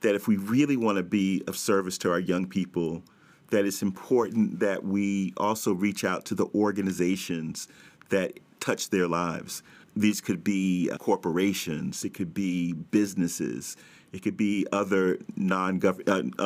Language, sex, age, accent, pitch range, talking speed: English, male, 40-59, American, 90-105 Hz, 150 wpm